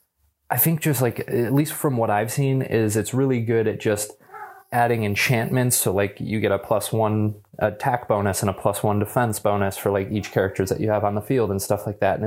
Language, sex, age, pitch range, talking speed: English, male, 20-39, 100-115 Hz, 235 wpm